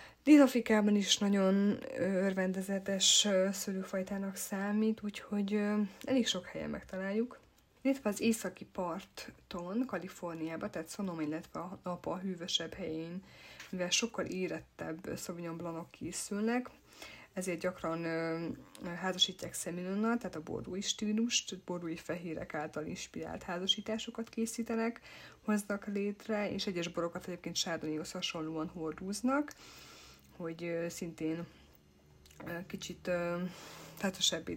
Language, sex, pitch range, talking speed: Hungarian, female, 170-205 Hz, 100 wpm